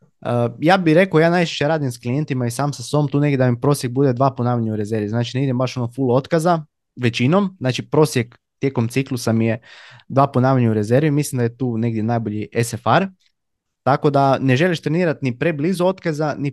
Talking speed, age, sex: 205 wpm, 20-39, male